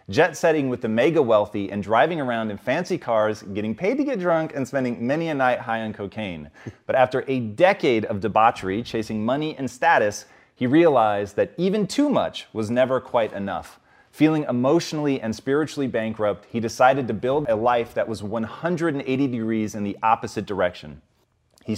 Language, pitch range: English, 110-150 Hz